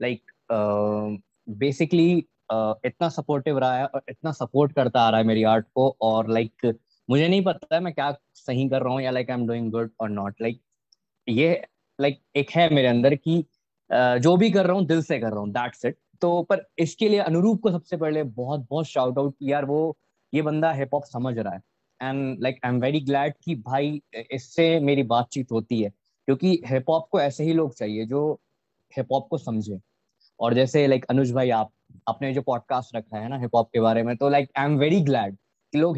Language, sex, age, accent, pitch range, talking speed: Hindi, male, 20-39, native, 115-150 Hz, 220 wpm